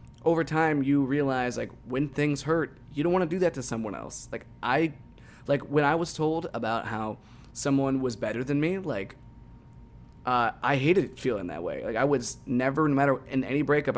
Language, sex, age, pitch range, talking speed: English, male, 20-39, 115-140 Hz, 200 wpm